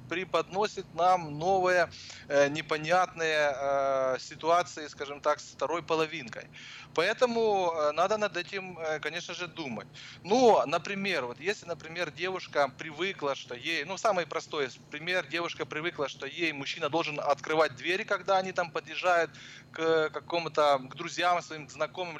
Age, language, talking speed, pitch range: 20-39, Russian, 135 wpm, 150-185 Hz